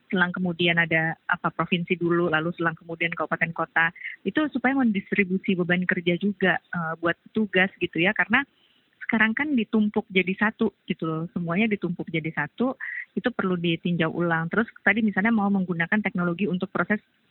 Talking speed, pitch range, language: 160 wpm, 175-210 Hz, Indonesian